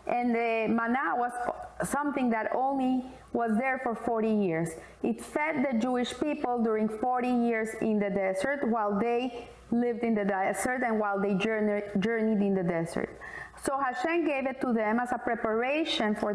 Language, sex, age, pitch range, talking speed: English, female, 30-49, 215-280 Hz, 170 wpm